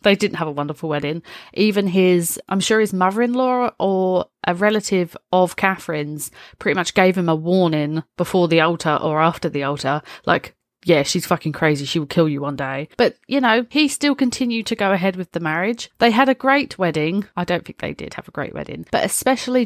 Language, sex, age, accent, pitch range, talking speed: English, female, 30-49, British, 160-215 Hz, 210 wpm